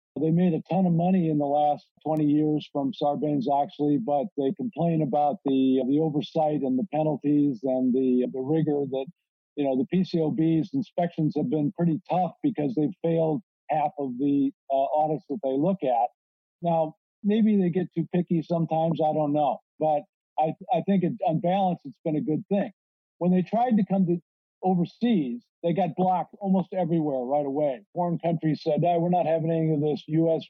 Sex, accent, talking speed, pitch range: male, American, 190 wpm, 150-180 Hz